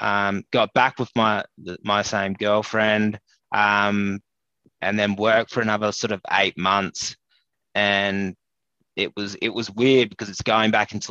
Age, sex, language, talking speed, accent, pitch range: 20-39, male, English, 155 wpm, Australian, 100-110 Hz